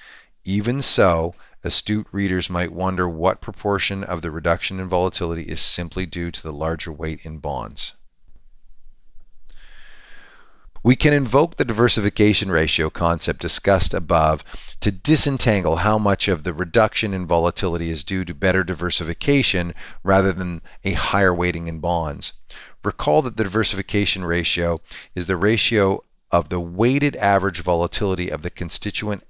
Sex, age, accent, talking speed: male, 40-59, American, 140 wpm